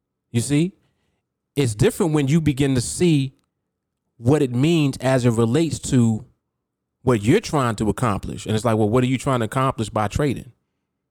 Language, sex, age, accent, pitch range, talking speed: English, male, 30-49, American, 110-145 Hz, 180 wpm